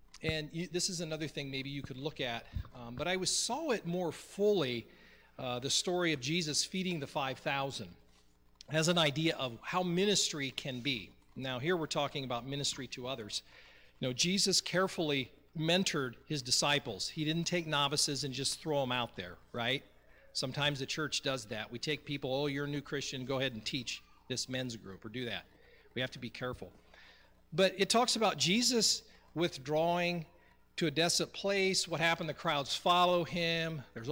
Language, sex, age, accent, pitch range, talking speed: English, male, 40-59, American, 130-170 Hz, 185 wpm